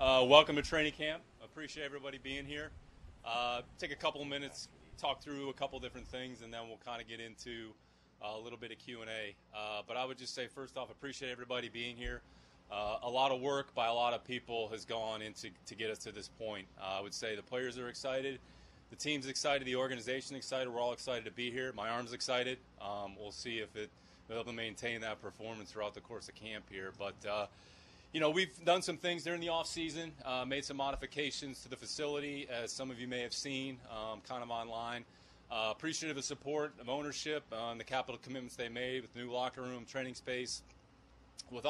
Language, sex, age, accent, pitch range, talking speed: English, male, 30-49, American, 110-140 Hz, 225 wpm